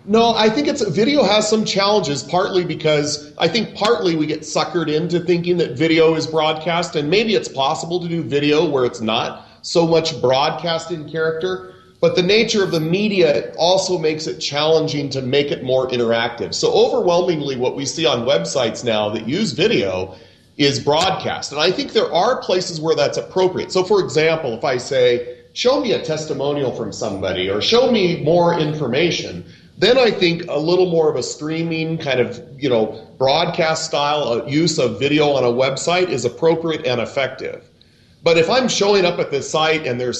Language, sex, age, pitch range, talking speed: English, male, 40-59, 130-175 Hz, 185 wpm